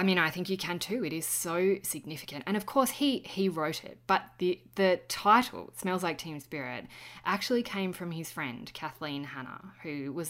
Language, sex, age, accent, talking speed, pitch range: English, female, 20-39, Australian, 205 wpm, 140-180 Hz